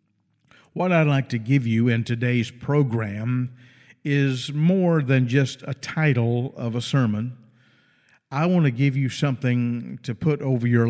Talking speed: 155 wpm